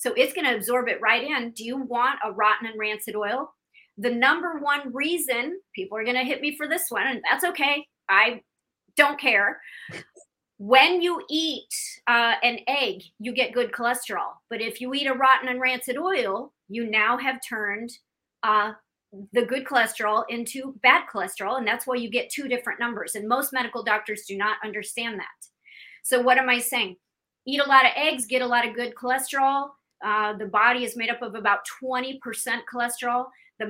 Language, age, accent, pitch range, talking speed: English, 30-49, American, 225-275 Hz, 190 wpm